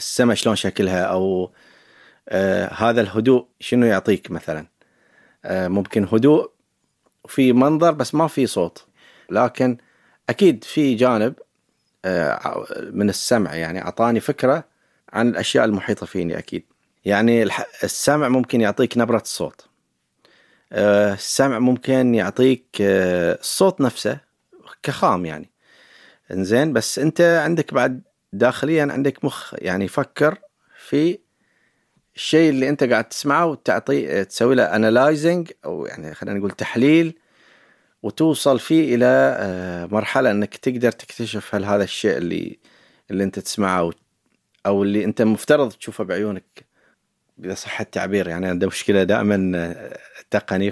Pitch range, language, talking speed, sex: 100-135 Hz, Arabic, 120 wpm, male